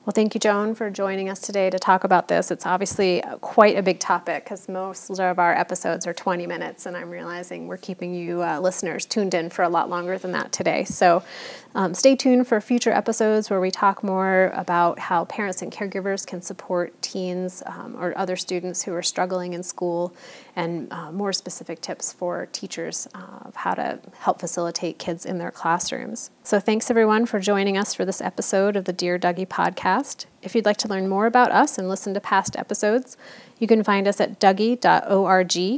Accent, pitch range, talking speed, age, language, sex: American, 180-215 Hz, 205 wpm, 30-49, English, female